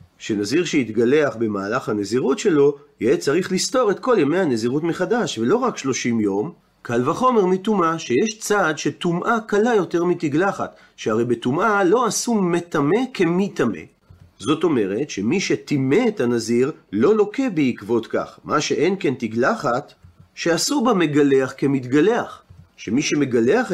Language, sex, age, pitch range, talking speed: Hebrew, male, 40-59, 125-200 Hz, 130 wpm